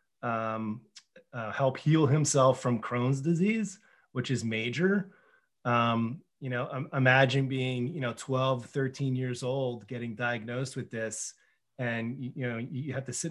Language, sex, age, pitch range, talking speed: English, male, 30-49, 120-140 Hz, 155 wpm